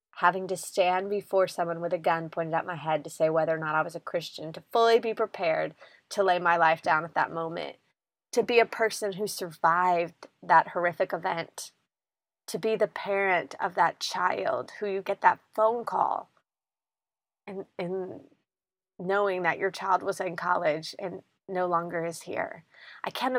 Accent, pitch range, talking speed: American, 170-200 Hz, 180 wpm